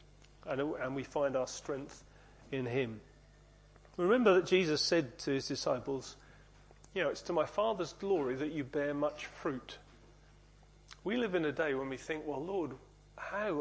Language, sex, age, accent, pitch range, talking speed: English, male, 40-59, British, 140-165 Hz, 170 wpm